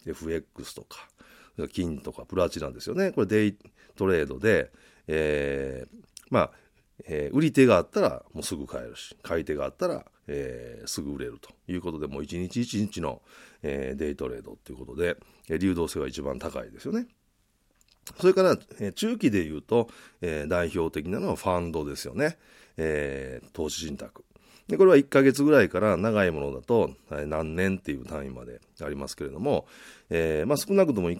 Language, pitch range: Japanese, 75-100 Hz